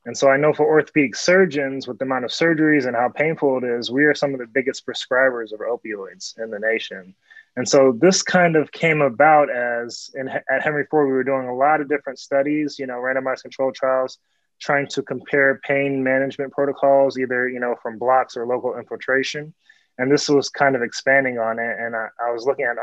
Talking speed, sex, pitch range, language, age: 215 wpm, male, 125-145 Hz, English, 20-39